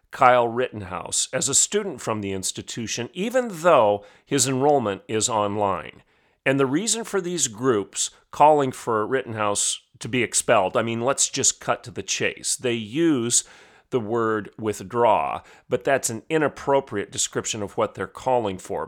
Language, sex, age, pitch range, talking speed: English, male, 40-59, 110-160 Hz, 155 wpm